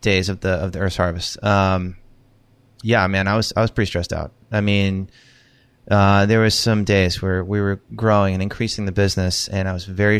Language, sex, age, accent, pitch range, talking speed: English, male, 30-49, American, 95-115 Hz, 210 wpm